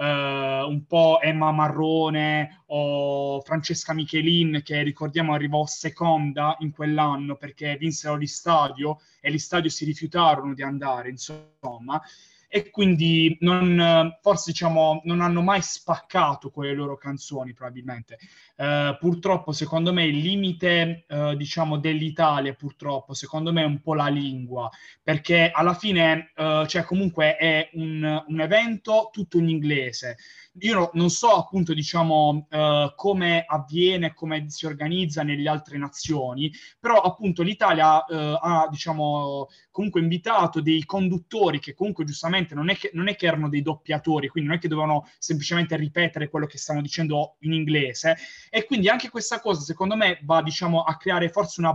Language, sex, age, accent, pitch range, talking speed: Italian, male, 20-39, native, 150-170 Hz, 150 wpm